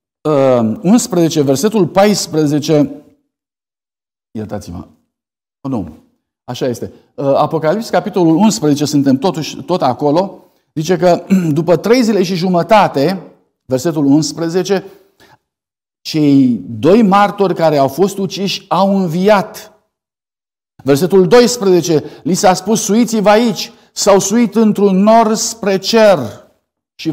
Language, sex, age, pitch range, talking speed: Romanian, male, 50-69, 135-195 Hz, 100 wpm